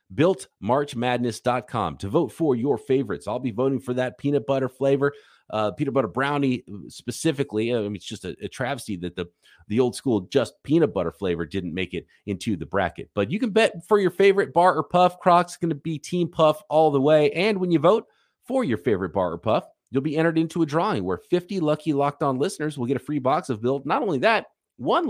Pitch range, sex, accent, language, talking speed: 115-165 Hz, male, American, English, 220 wpm